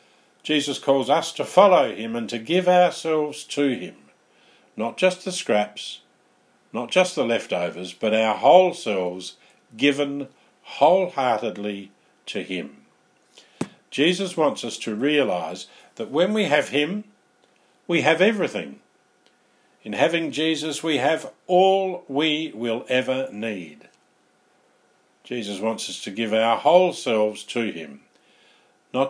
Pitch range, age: 100-160 Hz, 50-69